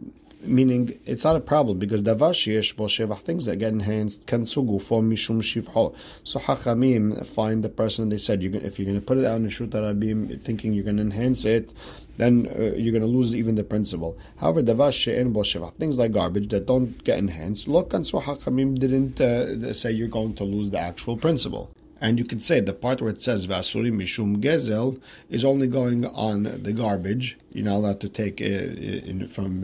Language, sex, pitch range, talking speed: English, male, 100-120 Hz, 200 wpm